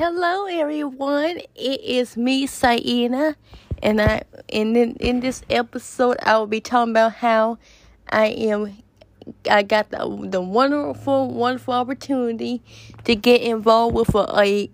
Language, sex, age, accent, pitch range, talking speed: English, female, 20-39, American, 220-250 Hz, 140 wpm